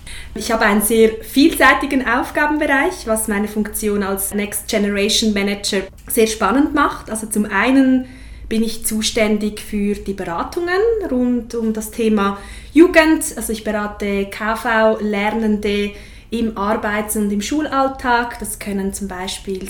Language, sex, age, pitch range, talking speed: German, female, 20-39, 210-265 Hz, 130 wpm